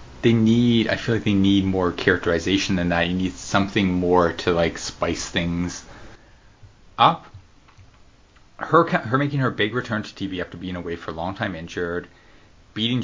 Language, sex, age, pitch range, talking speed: English, male, 30-49, 90-120 Hz, 170 wpm